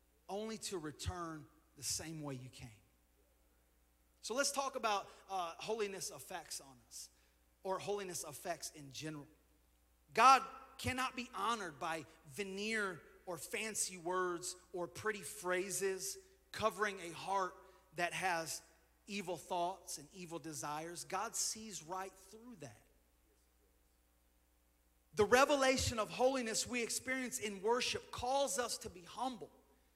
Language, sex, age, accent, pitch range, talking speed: English, male, 30-49, American, 170-255 Hz, 125 wpm